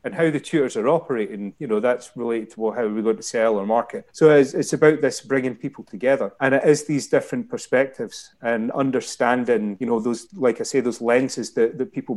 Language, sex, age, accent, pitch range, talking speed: English, male, 30-49, British, 125-165 Hz, 220 wpm